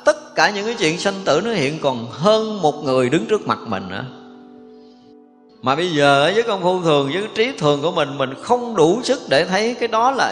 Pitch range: 135-210 Hz